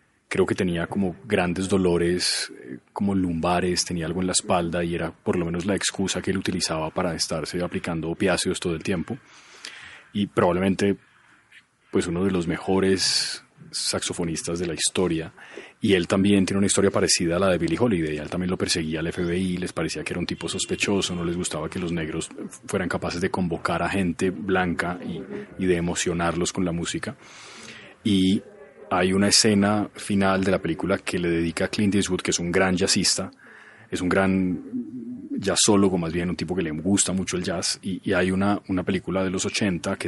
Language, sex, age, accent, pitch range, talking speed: Spanish, male, 30-49, Colombian, 85-100 Hz, 195 wpm